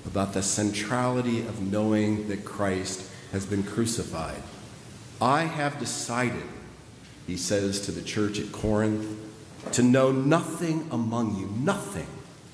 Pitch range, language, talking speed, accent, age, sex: 100-130 Hz, English, 125 wpm, American, 50-69, male